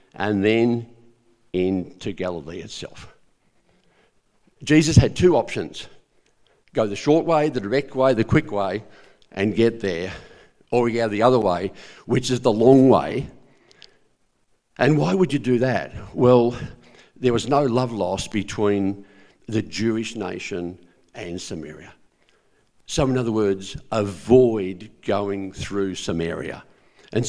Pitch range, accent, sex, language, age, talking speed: 100-135 Hz, Australian, male, English, 50-69, 130 wpm